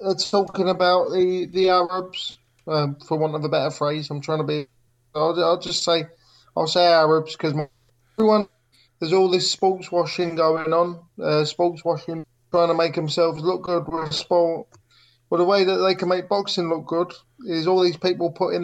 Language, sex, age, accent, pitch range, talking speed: English, male, 20-39, British, 160-185 Hz, 190 wpm